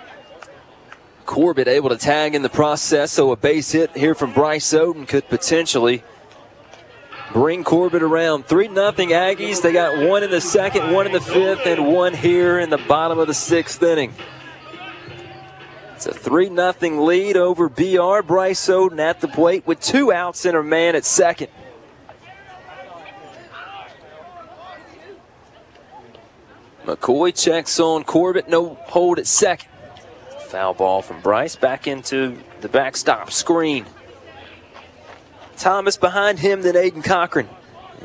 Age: 30-49